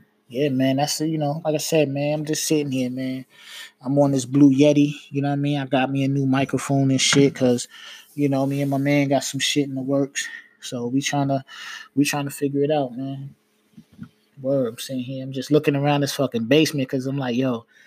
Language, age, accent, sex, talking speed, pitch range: English, 20-39, American, male, 240 wpm, 135-180 Hz